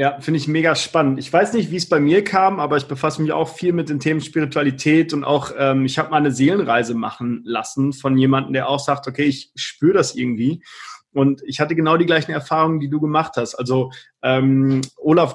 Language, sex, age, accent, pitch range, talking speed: German, male, 30-49, German, 140-175 Hz, 225 wpm